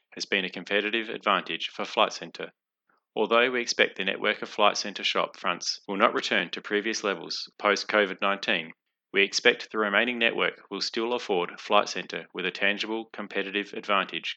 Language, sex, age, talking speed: English, male, 30-49, 170 wpm